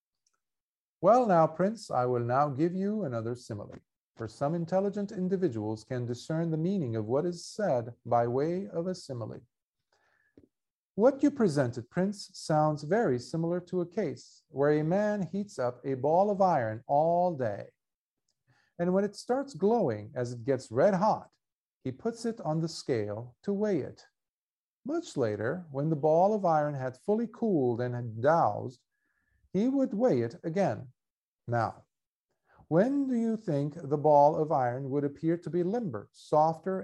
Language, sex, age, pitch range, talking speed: English, male, 50-69, 130-190 Hz, 165 wpm